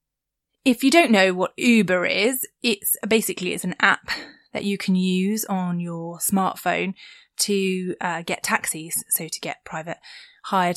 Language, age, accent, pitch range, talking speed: English, 20-39, British, 175-200 Hz, 155 wpm